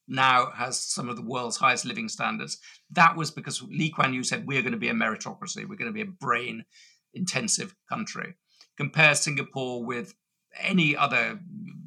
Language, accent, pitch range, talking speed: English, British, 125-190 Hz, 165 wpm